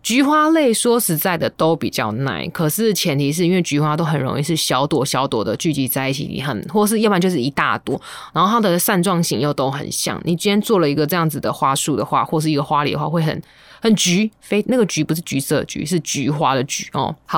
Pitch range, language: 150-205 Hz, Chinese